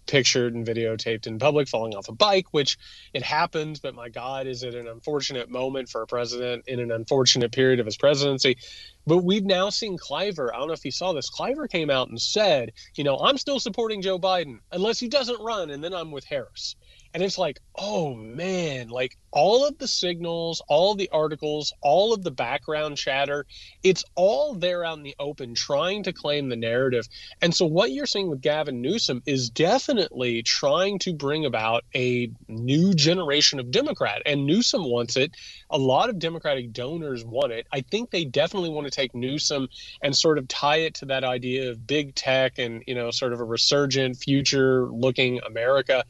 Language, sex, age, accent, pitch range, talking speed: English, male, 30-49, American, 125-175 Hz, 195 wpm